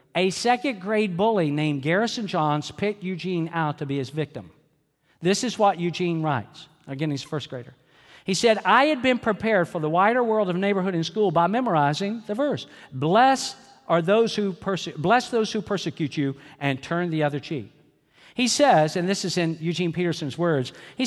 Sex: male